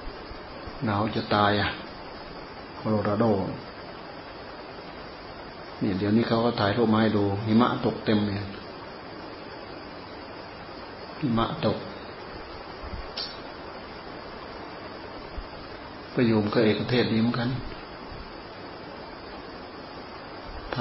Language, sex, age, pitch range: Thai, male, 30-49, 105-115 Hz